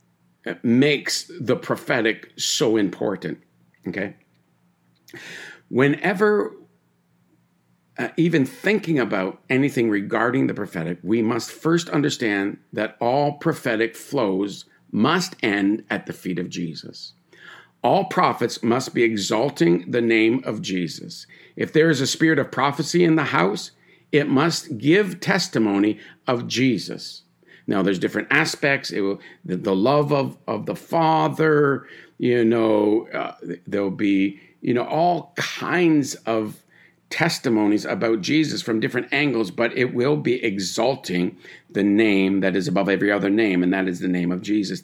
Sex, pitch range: male, 100-155 Hz